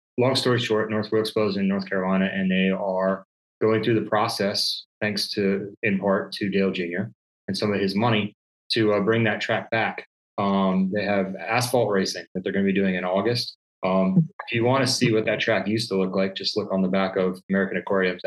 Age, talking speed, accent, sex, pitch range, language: 20-39, 225 wpm, American, male, 95-110 Hz, English